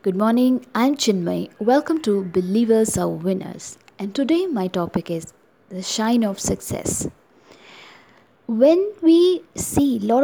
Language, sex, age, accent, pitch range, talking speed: English, female, 20-39, Indian, 215-275 Hz, 135 wpm